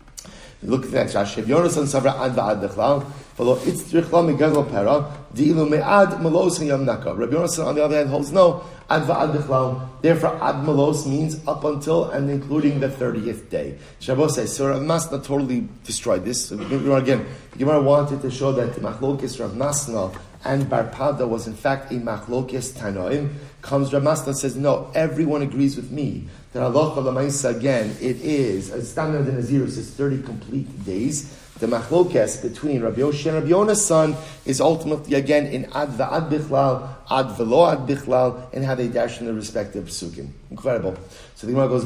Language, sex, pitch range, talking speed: English, male, 120-150 Hz, 175 wpm